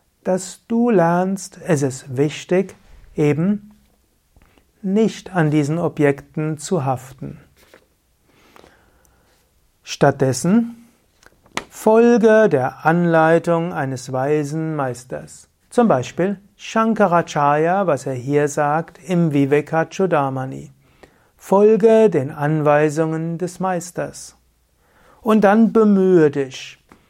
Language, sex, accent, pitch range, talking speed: German, male, German, 145-195 Hz, 85 wpm